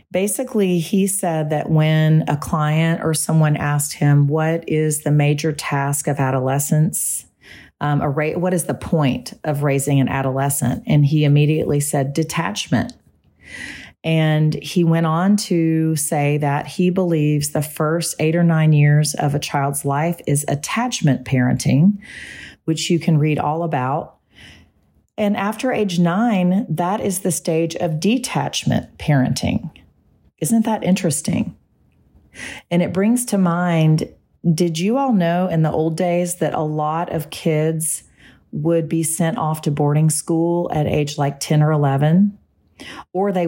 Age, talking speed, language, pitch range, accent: 40-59, 150 wpm, English, 145-175 Hz, American